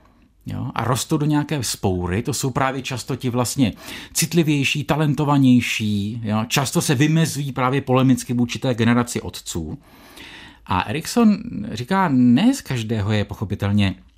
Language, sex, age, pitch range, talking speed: Czech, male, 50-69, 115-165 Hz, 135 wpm